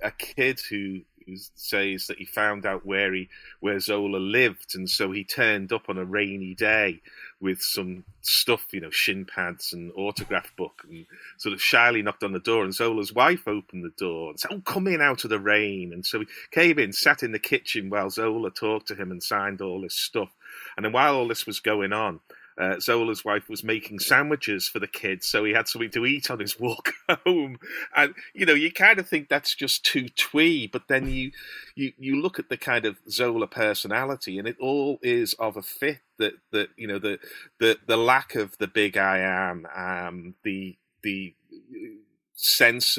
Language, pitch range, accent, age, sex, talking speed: English, 95-125 Hz, British, 40-59, male, 205 wpm